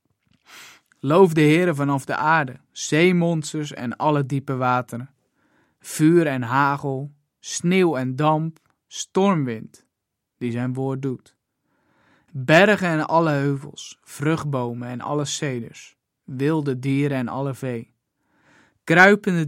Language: Dutch